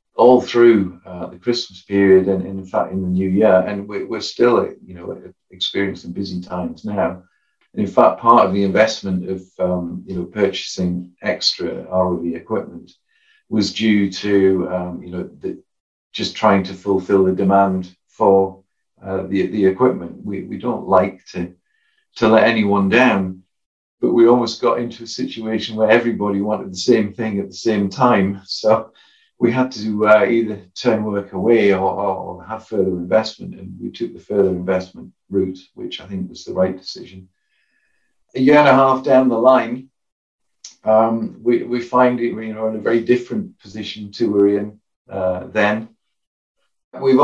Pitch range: 95-110 Hz